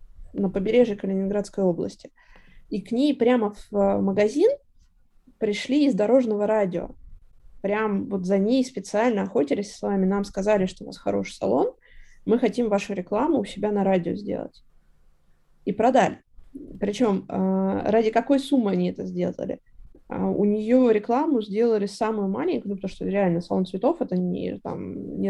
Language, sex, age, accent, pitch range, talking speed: Russian, female, 20-39, native, 195-230 Hz, 150 wpm